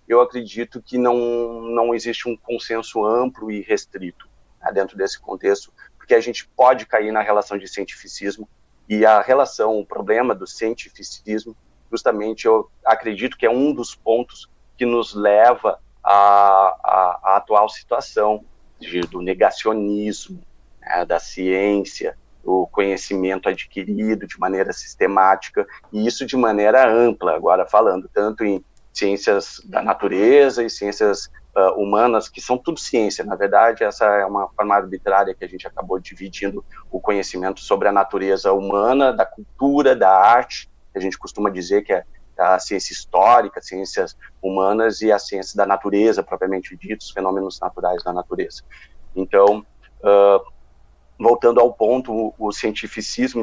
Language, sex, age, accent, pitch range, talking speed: Portuguese, male, 40-59, Brazilian, 95-120 Hz, 145 wpm